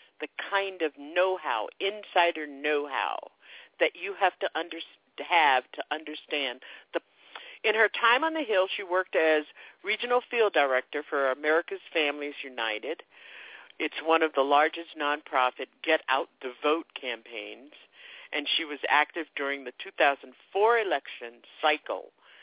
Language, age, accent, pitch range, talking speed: English, 50-69, American, 140-205 Hz, 125 wpm